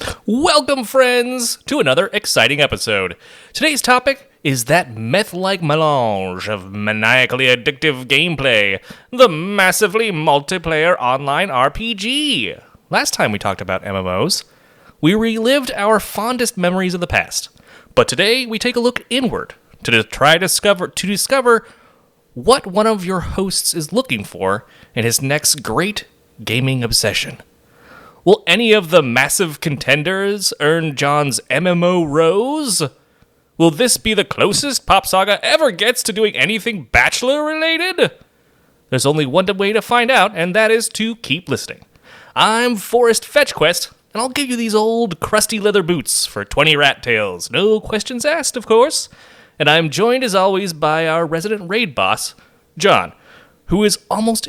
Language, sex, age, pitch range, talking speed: English, male, 30-49, 155-235 Hz, 145 wpm